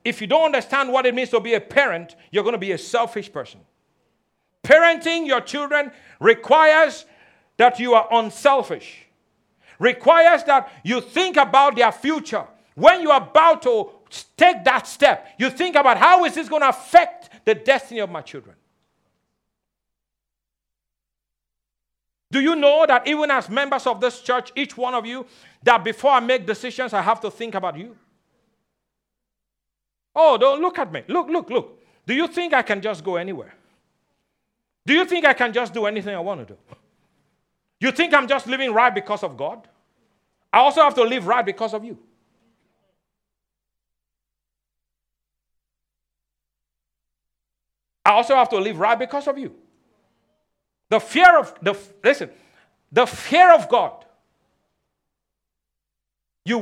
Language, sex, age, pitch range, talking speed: English, male, 50-69, 195-290 Hz, 155 wpm